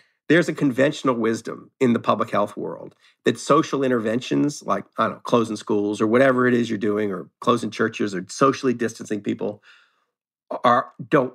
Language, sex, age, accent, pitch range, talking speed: English, male, 50-69, American, 115-135 Hz, 175 wpm